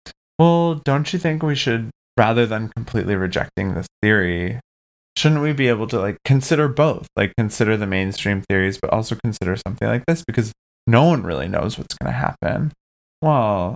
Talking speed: 180 wpm